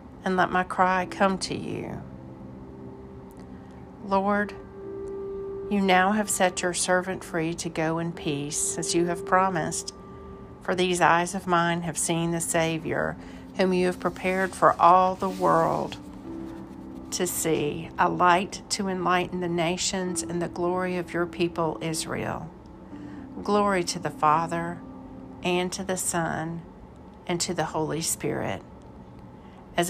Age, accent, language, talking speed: 50-69, American, English, 140 wpm